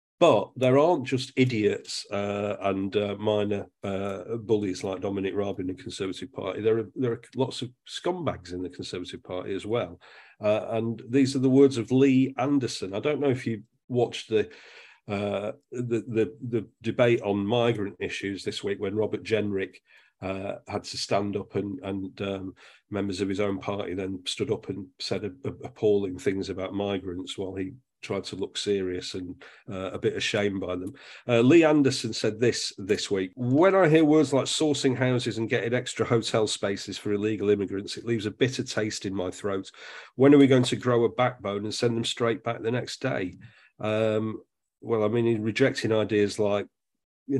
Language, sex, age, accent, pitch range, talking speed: English, male, 40-59, British, 100-125 Hz, 190 wpm